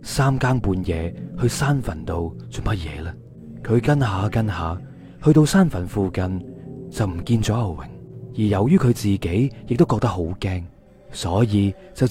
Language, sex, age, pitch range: Chinese, male, 20-39, 90-125 Hz